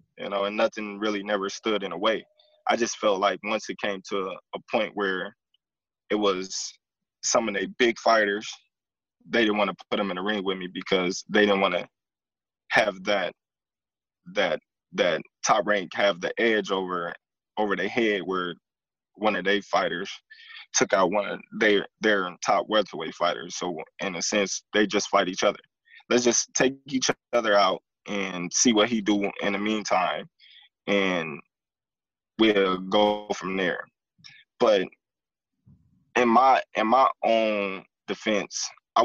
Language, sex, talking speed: English, male, 165 wpm